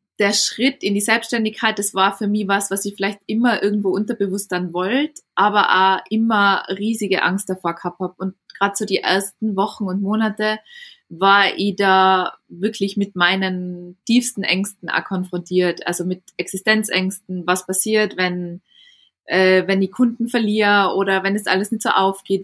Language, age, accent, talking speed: German, 20-39, German, 165 wpm